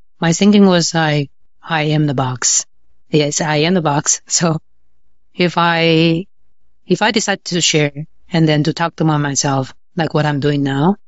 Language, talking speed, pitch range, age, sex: English, 175 wpm, 145-165 Hz, 30-49, female